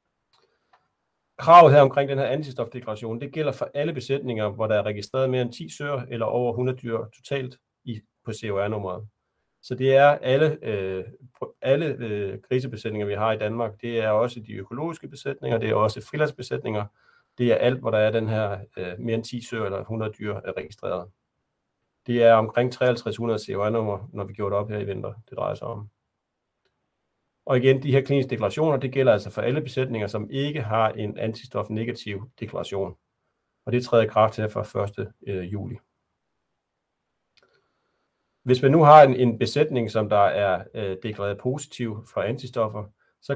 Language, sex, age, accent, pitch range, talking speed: Danish, male, 40-59, native, 110-130 Hz, 175 wpm